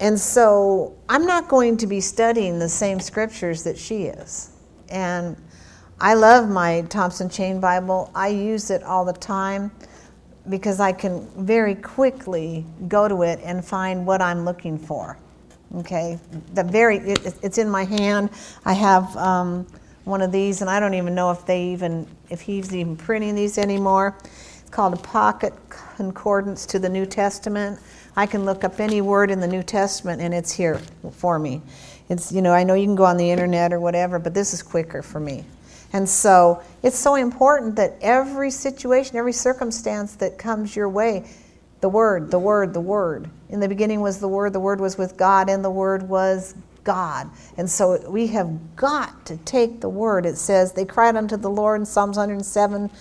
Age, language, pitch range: 50-69, English, 180-210 Hz